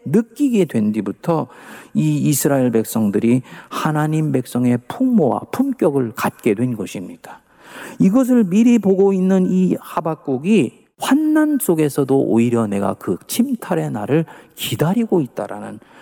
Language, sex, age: Korean, male, 40-59